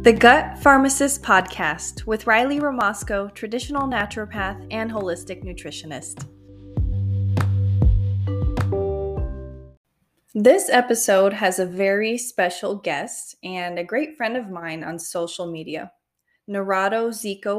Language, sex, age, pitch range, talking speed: English, female, 20-39, 175-225 Hz, 100 wpm